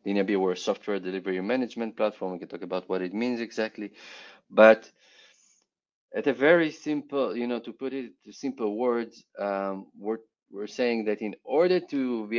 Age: 30-49